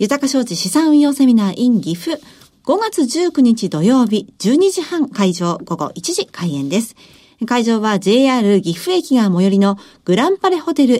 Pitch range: 195-300 Hz